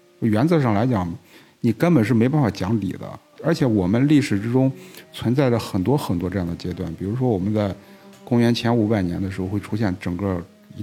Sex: male